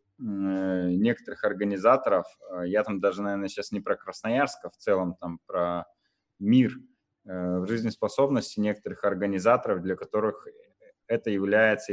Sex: male